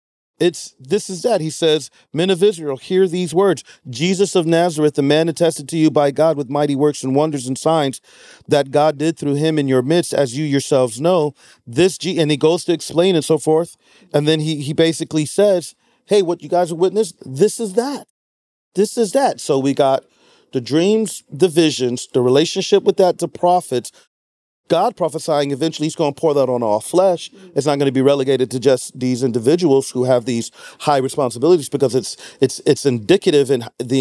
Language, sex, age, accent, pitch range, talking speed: English, male, 40-59, American, 135-170 Hz, 205 wpm